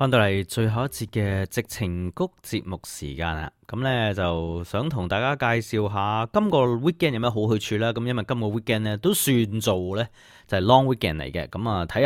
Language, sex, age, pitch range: Chinese, male, 30-49, 95-130 Hz